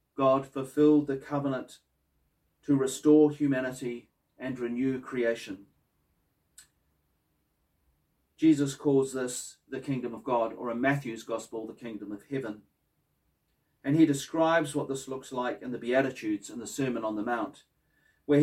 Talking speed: 135 wpm